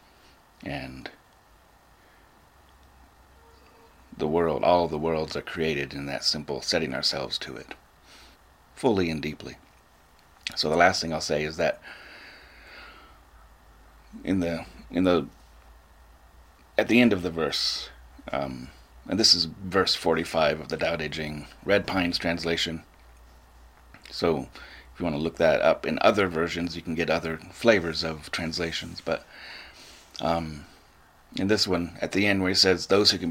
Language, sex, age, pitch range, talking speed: English, male, 30-49, 75-95 Hz, 145 wpm